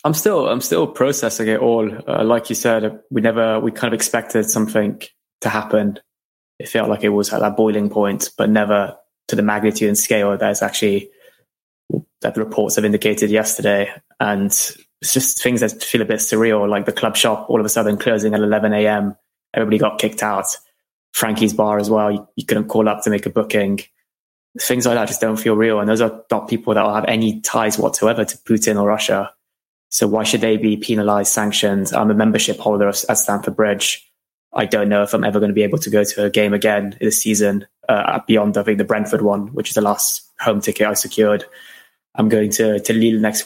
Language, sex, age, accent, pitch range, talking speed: English, male, 20-39, British, 105-110 Hz, 215 wpm